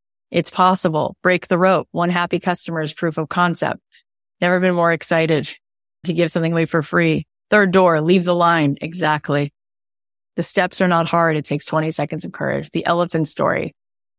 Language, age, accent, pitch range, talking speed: English, 20-39, American, 155-190 Hz, 180 wpm